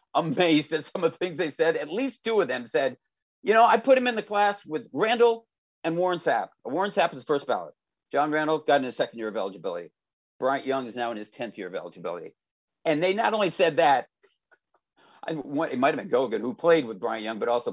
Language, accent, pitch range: English, American, 150-210 Hz